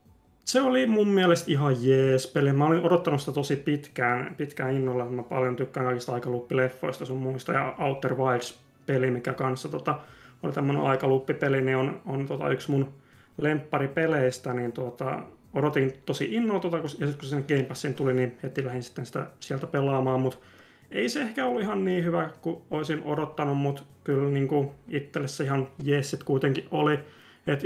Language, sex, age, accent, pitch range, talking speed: Finnish, male, 30-49, native, 125-145 Hz, 170 wpm